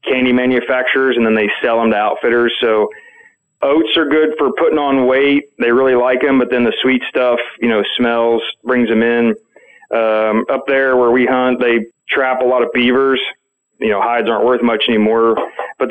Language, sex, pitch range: English, male, 115-150 Hz